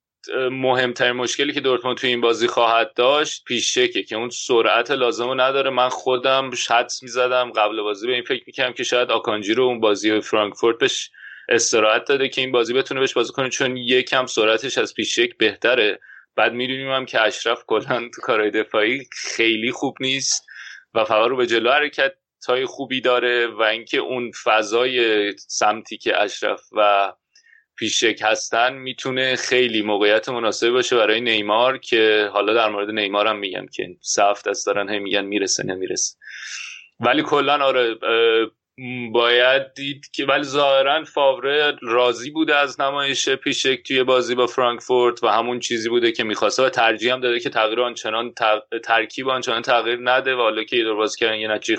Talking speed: 160 wpm